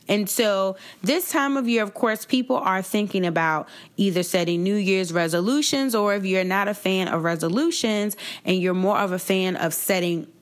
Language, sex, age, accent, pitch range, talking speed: English, female, 20-39, American, 180-230 Hz, 190 wpm